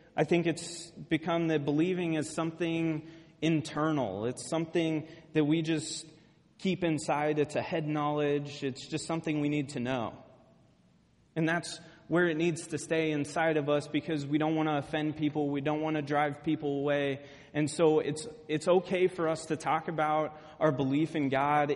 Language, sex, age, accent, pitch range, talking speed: English, male, 30-49, American, 140-160 Hz, 180 wpm